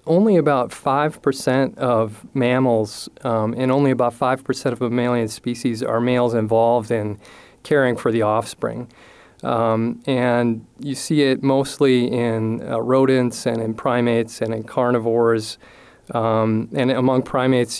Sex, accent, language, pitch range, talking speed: male, American, English, 115-130 Hz, 135 wpm